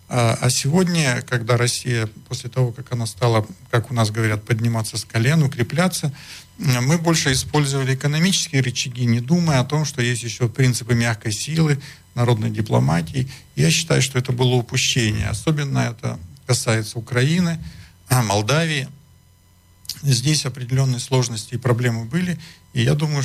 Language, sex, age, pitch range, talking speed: Slovak, male, 50-69, 120-140 Hz, 140 wpm